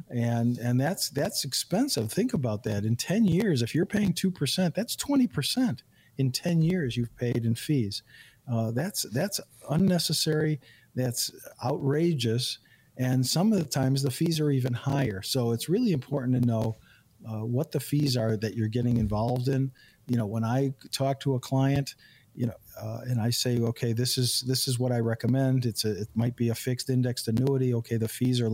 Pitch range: 115-140 Hz